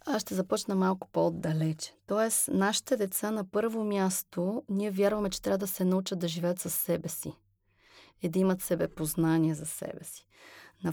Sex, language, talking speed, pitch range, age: female, Bulgarian, 175 wpm, 165-195 Hz, 30-49